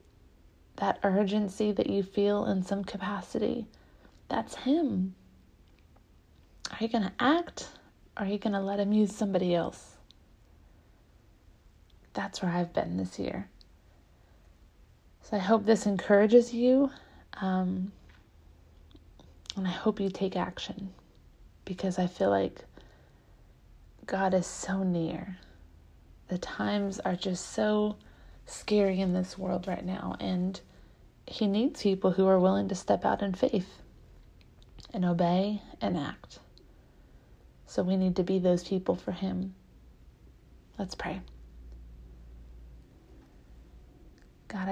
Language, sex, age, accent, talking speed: English, female, 30-49, American, 120 wpm